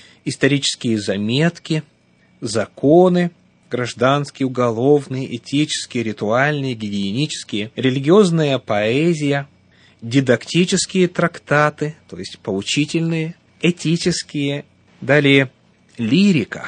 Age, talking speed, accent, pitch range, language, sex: 30-49, 65 wpm, native, 115-160 Hz, Russian, male